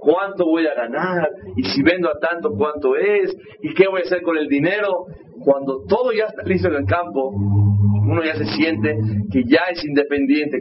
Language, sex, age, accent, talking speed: Spanish, male, 40-59, Mexican, 200 wpm